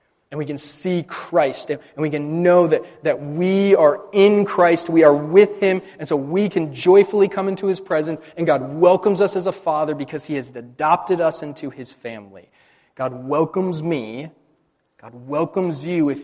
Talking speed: 185 wpm